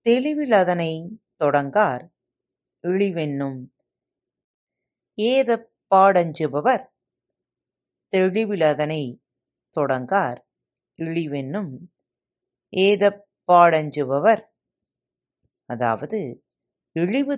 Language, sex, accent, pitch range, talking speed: Tamil, female, native, 145-215 Hz, 40 wpm